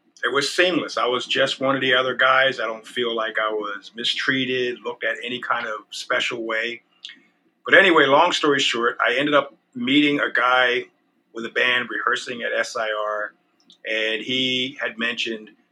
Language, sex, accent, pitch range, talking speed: English, male, American, 115-145 Hz, 175 wpm